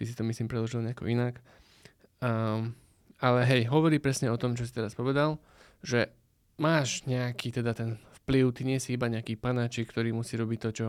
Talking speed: 185 wpm